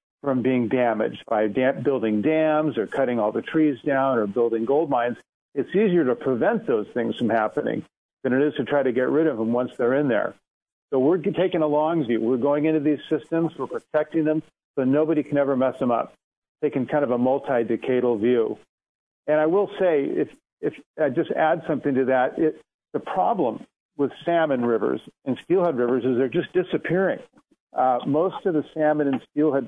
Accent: American